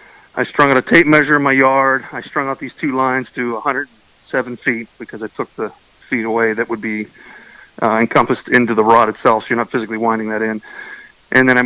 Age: 40-59